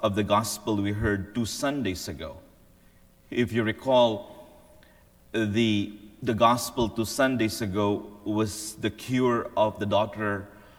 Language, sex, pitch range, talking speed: English, male, 95-115 Hz, 130 wpm